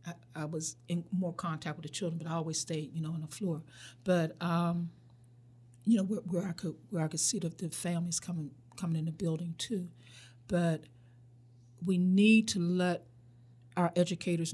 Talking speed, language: 190 wpm, English